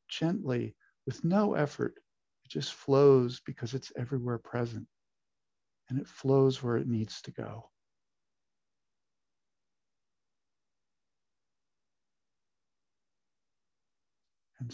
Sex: male